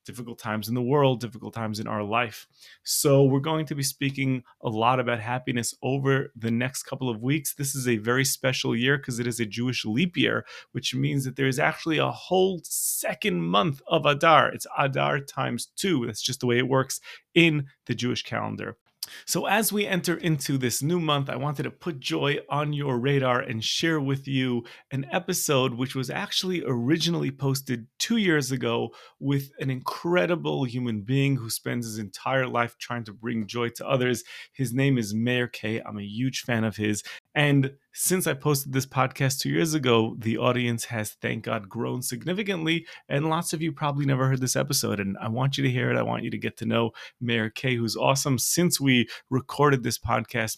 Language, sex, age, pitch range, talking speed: English, male, 30-49, 115-140 Hz, 200 wpm